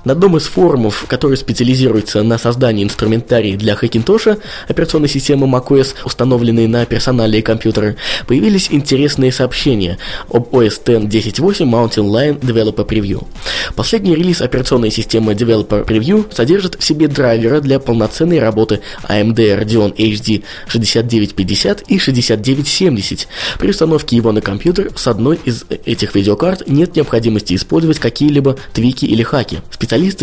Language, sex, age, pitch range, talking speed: Russian, male, 20-39, 110-145 Hz, 135 wpm